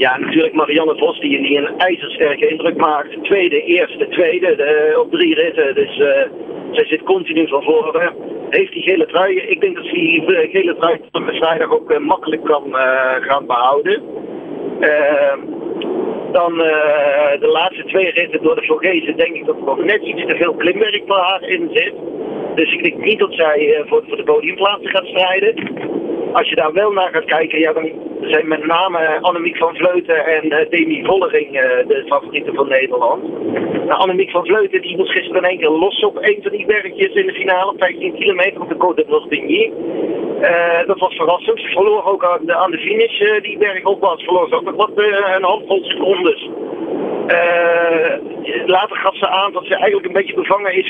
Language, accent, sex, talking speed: Dutch, Dutch, male, 195 wpm